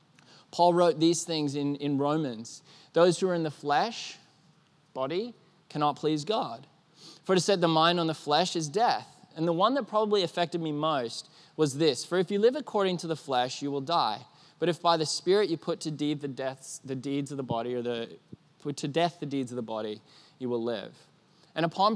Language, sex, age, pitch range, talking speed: English, male, 20-39, 135-175 Hz, 215 wpm